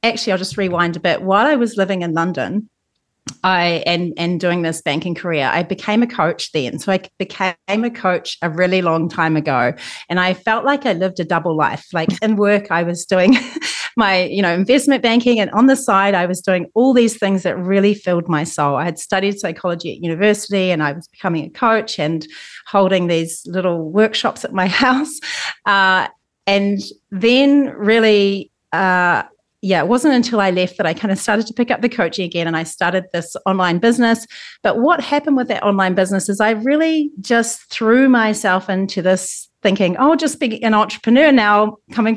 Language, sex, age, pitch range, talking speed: English, female, 30-49, 175-220 Hz, 200 wpm